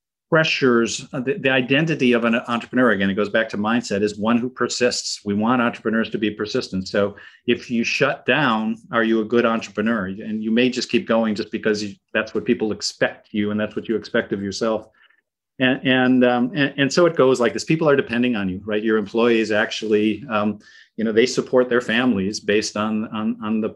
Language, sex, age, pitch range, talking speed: English, male, 40-59, 105-125 Hz, 210 wpm